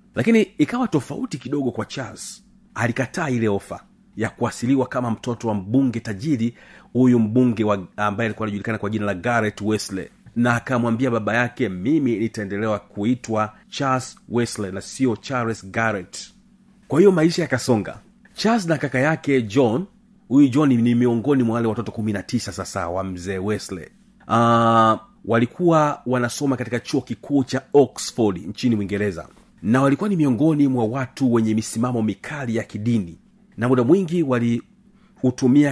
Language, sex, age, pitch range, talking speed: Swahili, male, 40-59, 110-145 Hz, 145 wpm